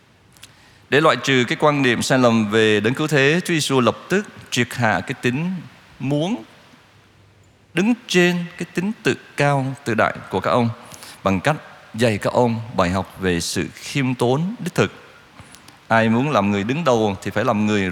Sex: male